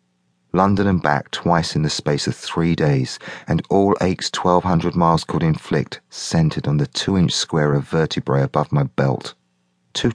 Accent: British